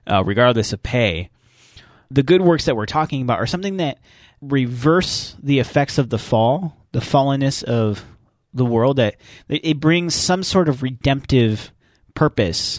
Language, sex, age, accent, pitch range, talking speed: English, male, 30-49, American, 110-140 Hz, 155 wpm